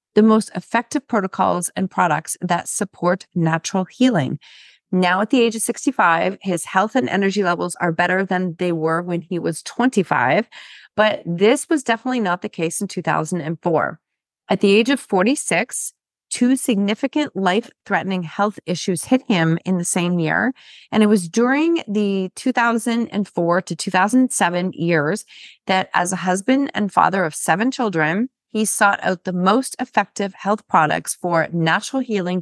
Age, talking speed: 30-49, 155 wpm